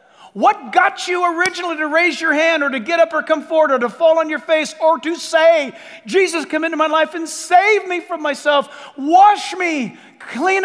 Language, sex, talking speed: English, male, 210 wpm